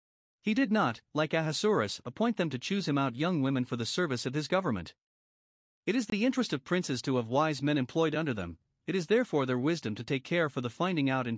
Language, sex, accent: English, male, American